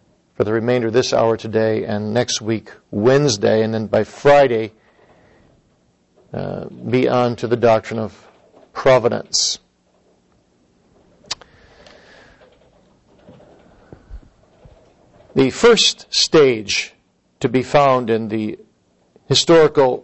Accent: American